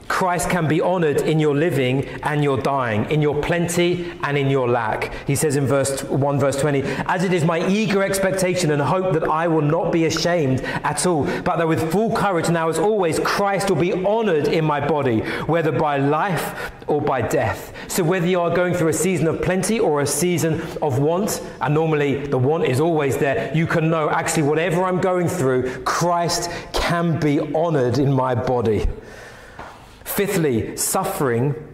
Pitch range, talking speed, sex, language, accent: 145-185 Hz, 190 wpm, male, English, British